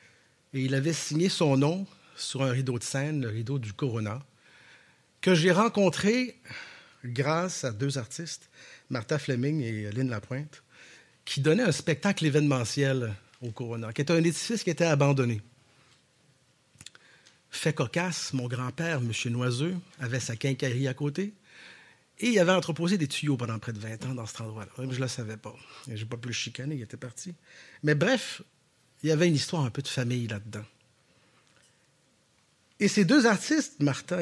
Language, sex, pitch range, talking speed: French, male, 125-165 Hz, 170 wpm